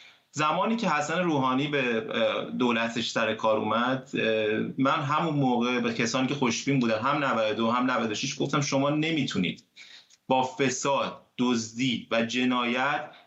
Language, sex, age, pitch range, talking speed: Persian, male, 30-49, 140-170 Hz, 130 wpm